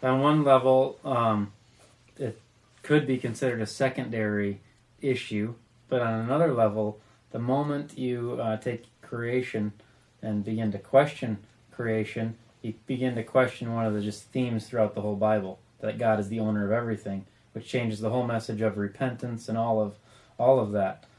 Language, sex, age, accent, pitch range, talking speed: English, male, 20-39, American, 110-125 Hz, 165 wpm